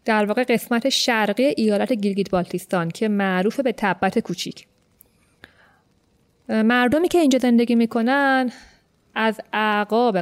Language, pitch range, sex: Persian, 200-260 Hz, female